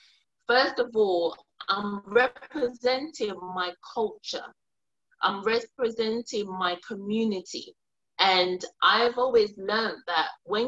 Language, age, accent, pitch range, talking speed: English, 30-49, British, 185-250 Hz, 95 wpm